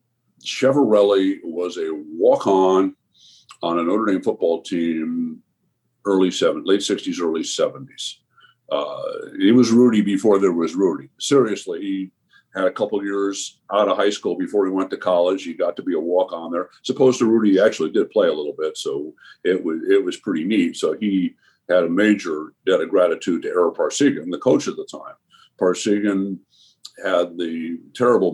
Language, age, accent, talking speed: English, 50-69, American, 175 wpm